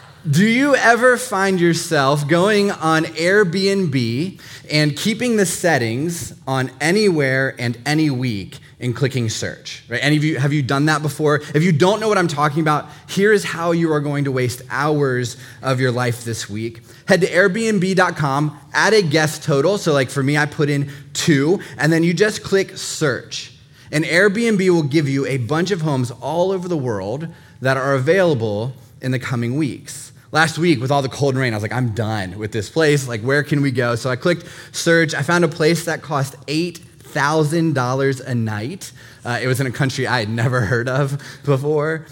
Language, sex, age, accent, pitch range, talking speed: English, male, 20-39, American, 130-165 Hz, 195 wpm